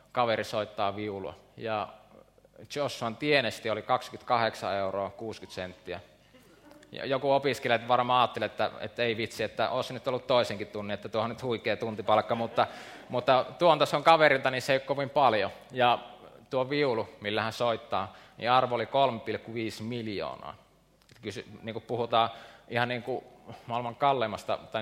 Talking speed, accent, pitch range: 145 wpm, native, 110-130 Hz